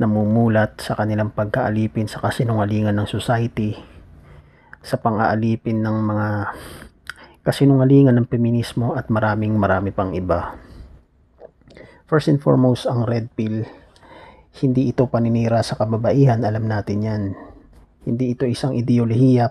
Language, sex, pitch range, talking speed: Filipino, male, 110-125 Hz, 115 wpm